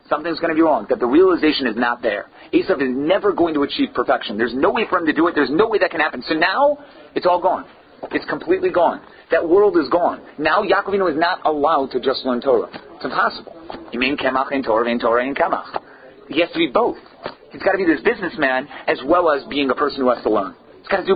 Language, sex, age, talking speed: English, male, 40-59, 225 wpm